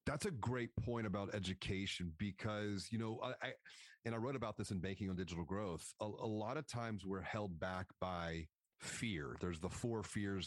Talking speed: 200 wpm